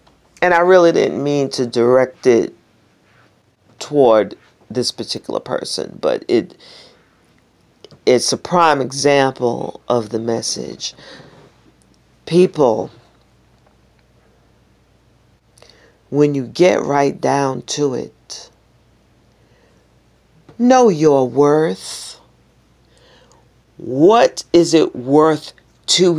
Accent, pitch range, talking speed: American, 115-160 Hz, 85 wpm